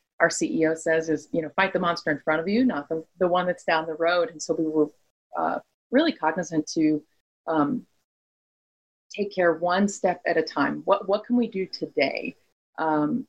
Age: 30-49